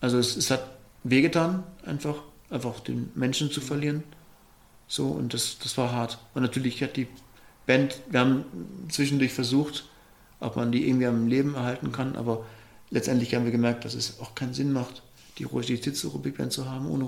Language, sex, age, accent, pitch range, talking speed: German, male, 40-59, German, 115-135 Hz, 190 wpm